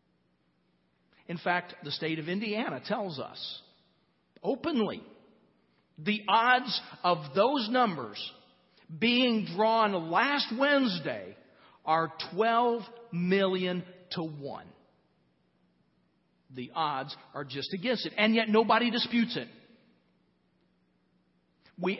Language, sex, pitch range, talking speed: English, male, 165-230 Hz, 95 wpm